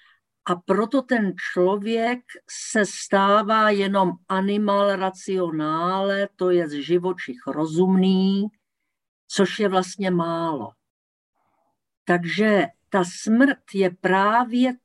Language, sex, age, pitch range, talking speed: Slovak, female, 50-69, 180-225 Hz, 95 wpm